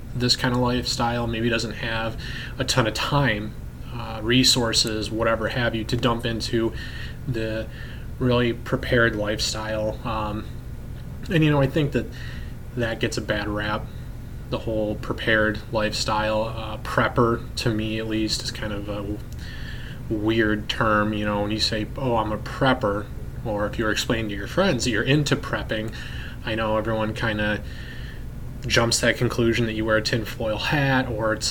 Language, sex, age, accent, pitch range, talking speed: English, male, 20-39, American, 110-125 Hz, 165 wpm